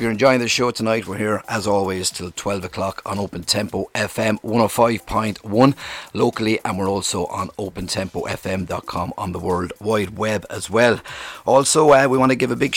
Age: 30-49